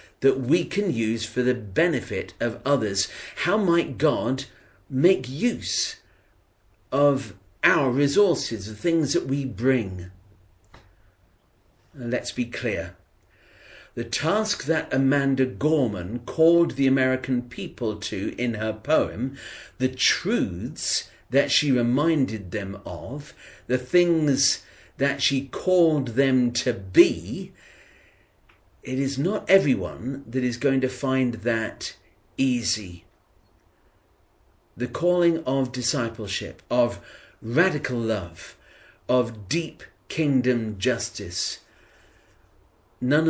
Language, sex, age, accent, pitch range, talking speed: English, male, 50-69, British, 100-135 Hz, 105 wpm